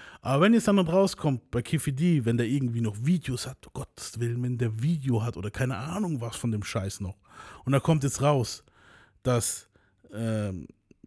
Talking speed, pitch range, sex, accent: 200 wpm, 115-150 Hz, male, German